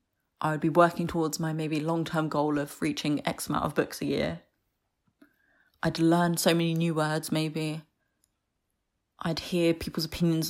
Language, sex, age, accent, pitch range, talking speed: English, female, 20-39, British, 145-175 Hz, 160 wpm